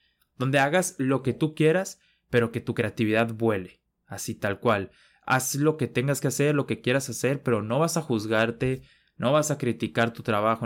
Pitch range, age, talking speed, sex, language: 110-135 Hz, 20-39, 195 wpm, male, Spanish